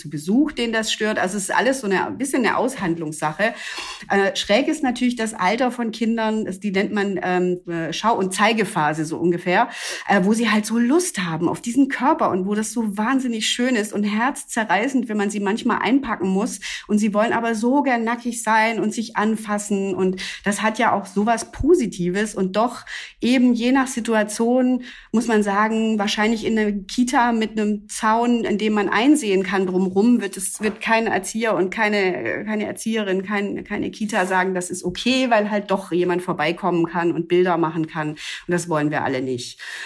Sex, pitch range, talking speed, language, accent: female, 185-230 Hz, 195 wpm, German, German